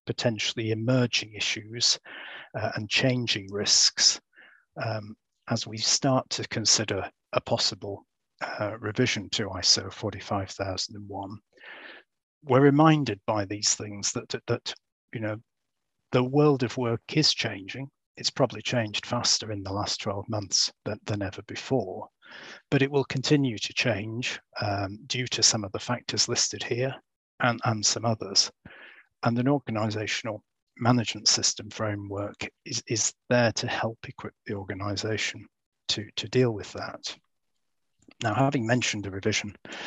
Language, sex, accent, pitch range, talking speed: English, male, British, 105-125 Hz, 135 wpm